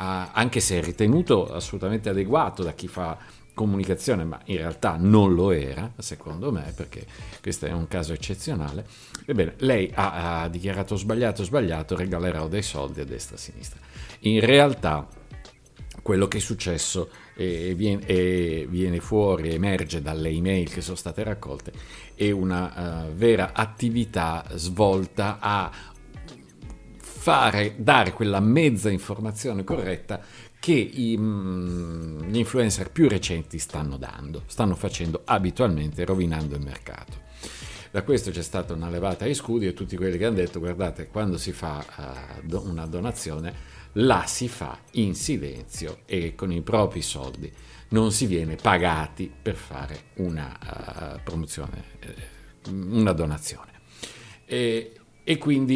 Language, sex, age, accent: Italian, male, 50-69, native